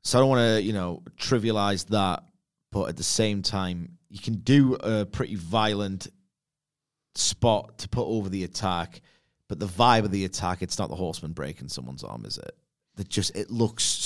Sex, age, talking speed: male, 30-49, 190 wpm